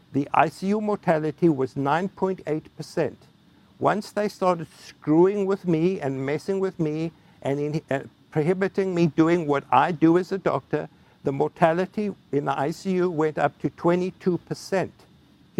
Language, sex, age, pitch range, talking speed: English, male, 60-79, 155-190 Hz, 135 wpm